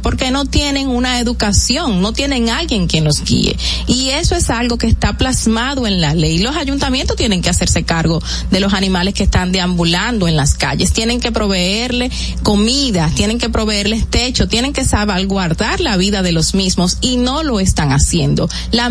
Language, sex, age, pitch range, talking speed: Spanish, female, 30-49, 195-255 Hz, 185 wpm